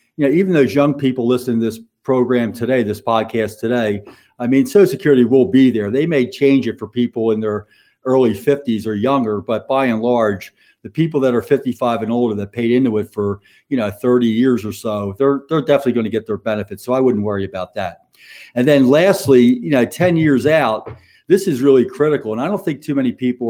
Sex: male